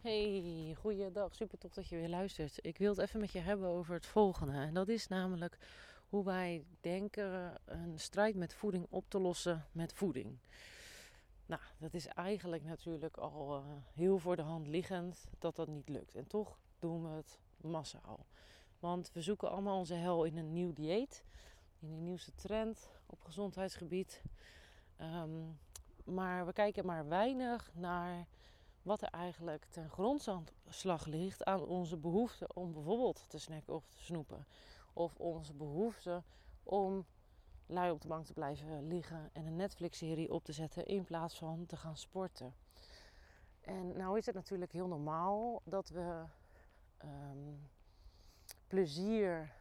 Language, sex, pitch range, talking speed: Dutch, female, 155-190 Hz, 155 wpm